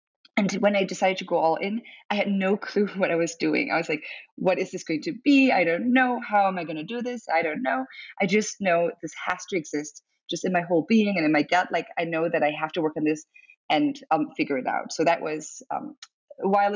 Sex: female